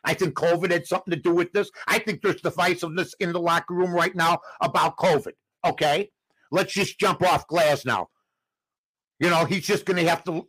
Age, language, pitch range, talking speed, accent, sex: 60-79, English, 165-220 Hz, 205 wpm, American, male